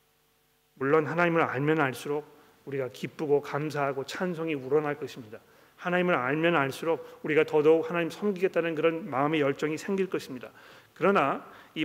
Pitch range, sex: 150-185 Hz, male